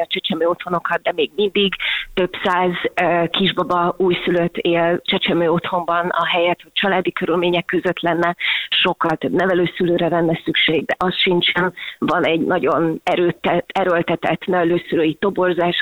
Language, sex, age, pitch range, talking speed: Hungarian, female, 30-49, 170-185 Hz, 130 wpm